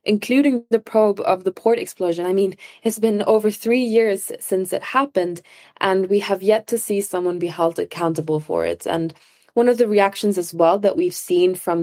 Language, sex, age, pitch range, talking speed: English, female, 20-39, 170-200 Hz, 205 wpm